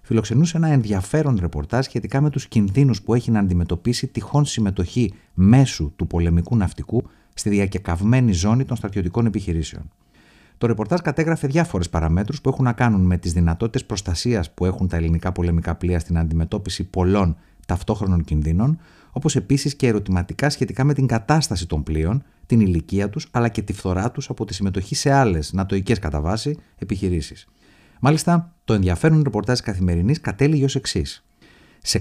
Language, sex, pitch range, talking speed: Greek, male, 90-130 Hz, 160 wpm